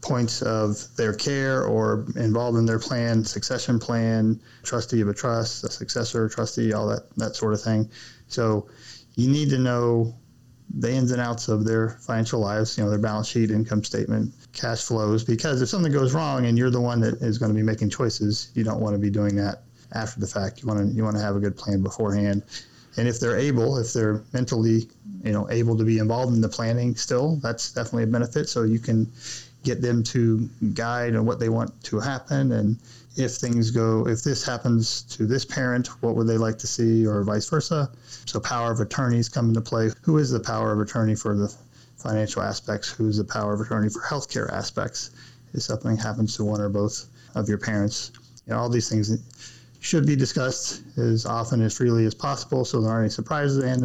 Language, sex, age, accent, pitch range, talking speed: English, male, 30-49, American, 110-120 Hz, 210 wpm